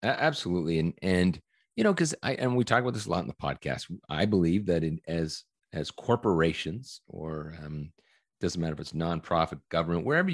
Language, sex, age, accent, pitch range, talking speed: English, male, 40-59, American, 80-115 Hz, 195 wpm